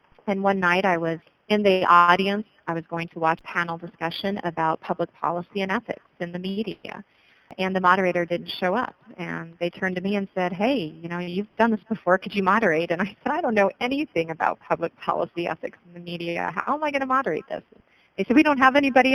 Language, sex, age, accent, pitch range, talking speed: English, female, 40-59, American, 155-195 Hz, 230 wpm